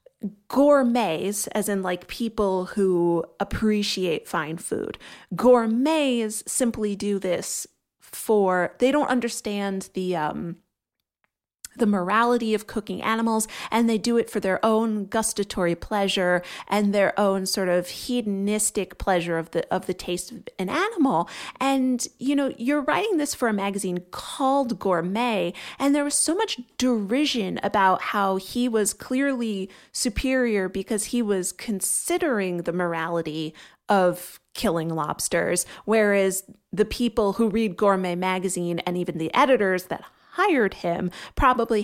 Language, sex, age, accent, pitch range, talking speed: English, female, 30-49, American, 185-235 Hz, 135 wpm